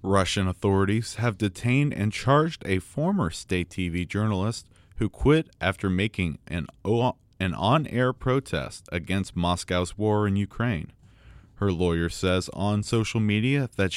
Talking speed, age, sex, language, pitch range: 130 wpm, 30-49, male, English, 90-120 Hz